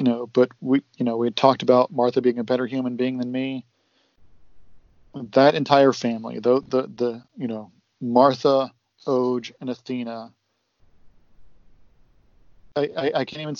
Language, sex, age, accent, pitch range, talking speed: English, male, 40-59, American, 120-130 Hz, 150 wpm